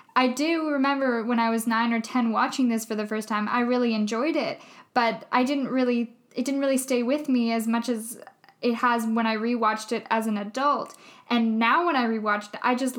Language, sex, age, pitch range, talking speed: English, female, 10-29, 220-250 Hz, 225 wpm